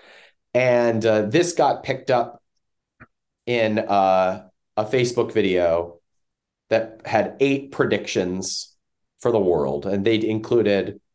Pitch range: 95-125 Hz